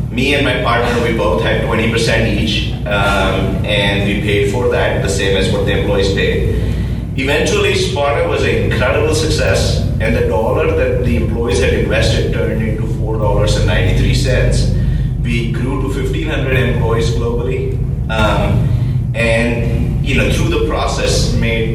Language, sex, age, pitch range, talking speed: English, male, 30-49, 110-130 Hz, 145 wpm